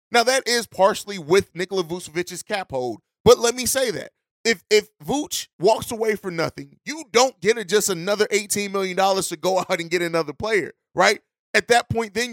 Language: English